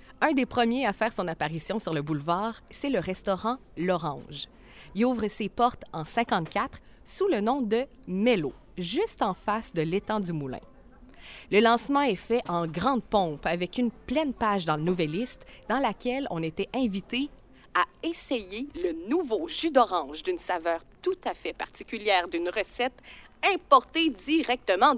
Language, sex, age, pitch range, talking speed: French, female, 30-49, 185-275 Hz, 160 wpm